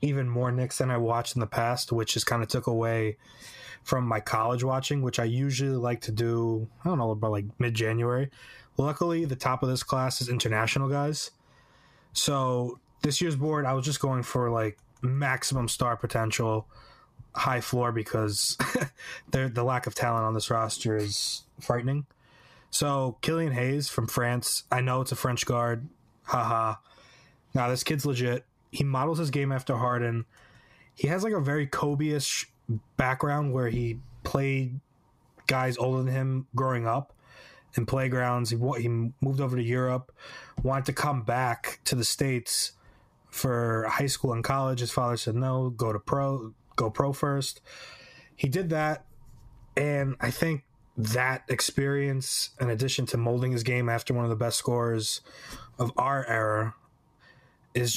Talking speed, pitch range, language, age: 165 wpm, 115-135 Hz, English, 20-39